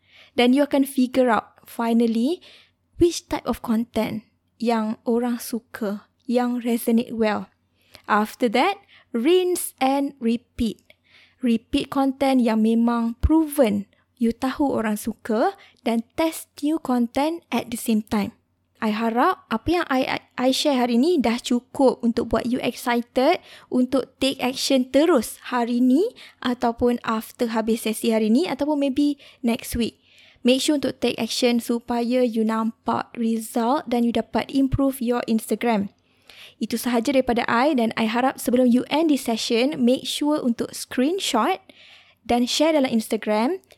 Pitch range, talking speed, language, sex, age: 230-270 Hz, 145 wpm, Malay, female, 20-39